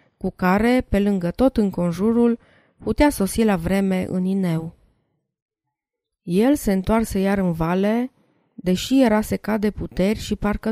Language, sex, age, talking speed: Romanian, female, 20-39, 140 wpm